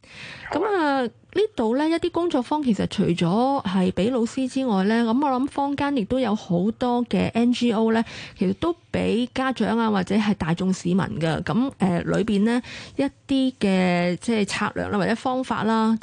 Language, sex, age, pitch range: Chinese, female, 20-39, 180-245 Hz